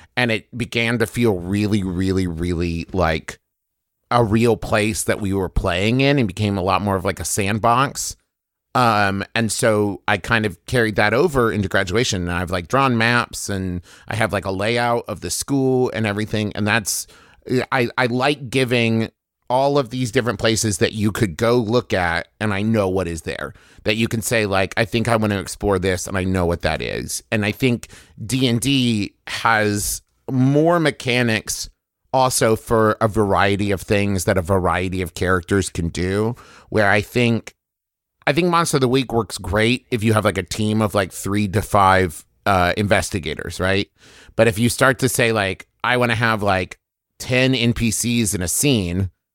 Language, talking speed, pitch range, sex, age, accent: English, 190 wpm, 95-120 Hz, male, 30-49, American